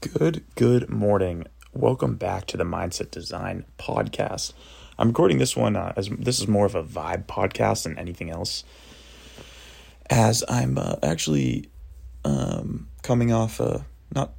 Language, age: English, 30-49